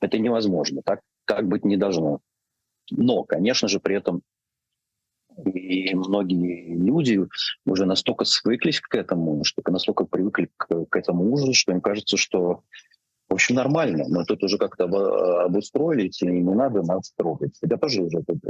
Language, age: Russian, 30-49